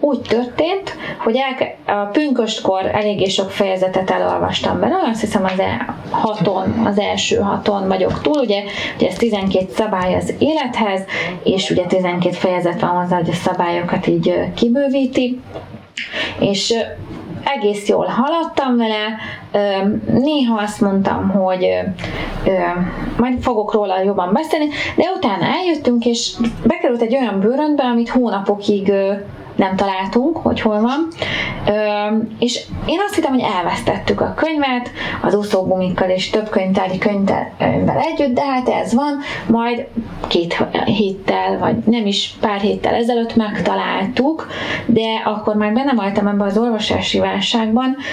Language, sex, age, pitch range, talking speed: English, female, 20-39, 195-240 Hz, 130 wpm